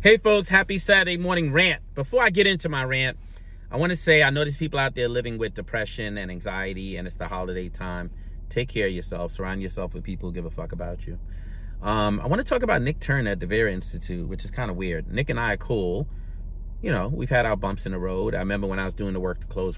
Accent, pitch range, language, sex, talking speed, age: American, 85-120 Hz, English, male, 265 wpm, 30-49